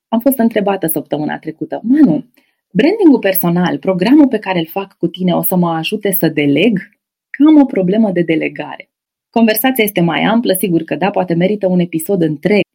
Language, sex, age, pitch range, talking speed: Romanian, female, 20-39, 180-245 Hz, 180 wpm